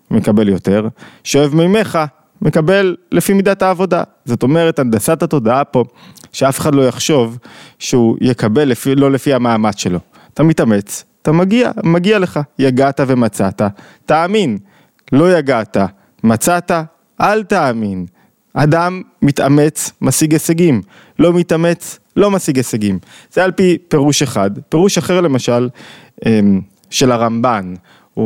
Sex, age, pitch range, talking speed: male, 20-39, 120-170 Hz, 125 wpm